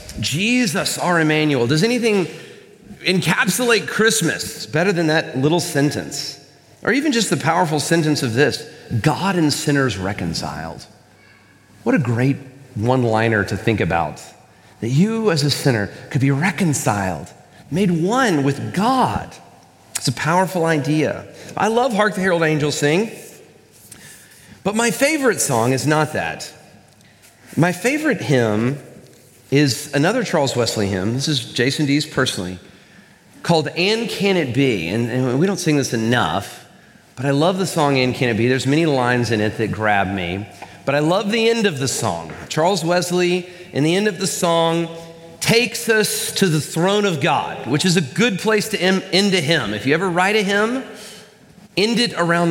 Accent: American